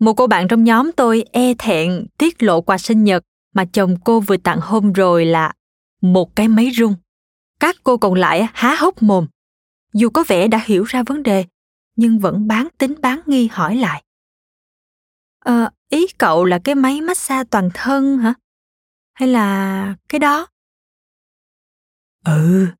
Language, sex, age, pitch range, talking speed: Vietnamese, female, 20-39, 185-250 Hz, 170 wpm